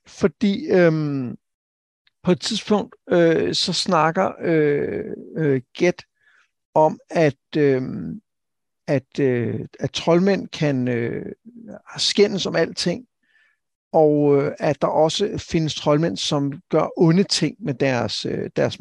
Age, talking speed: 60-79, 120 wpm